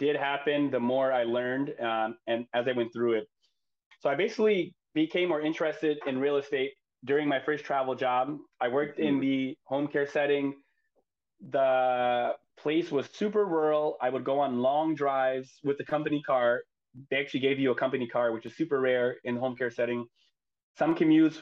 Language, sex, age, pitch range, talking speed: English, male, 20-39, 120-145 Hz, 190 wpm